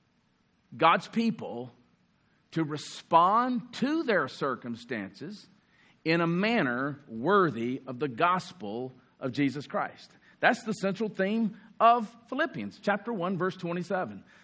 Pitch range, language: 145-225 Hz, English